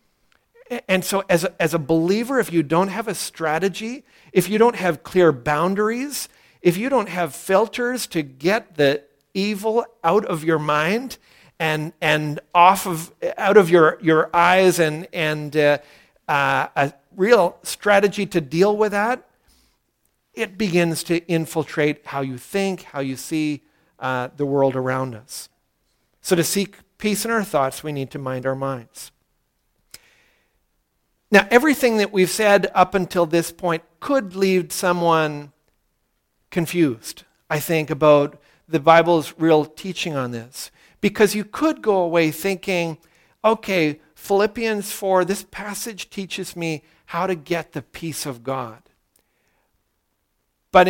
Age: 50-69